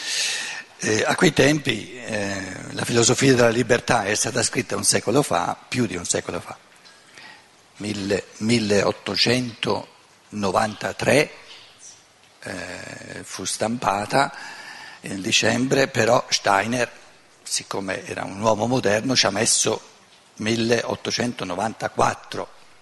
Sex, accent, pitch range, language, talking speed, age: male, native, 105-135 Hz, Italian, 100 wpm, 60-79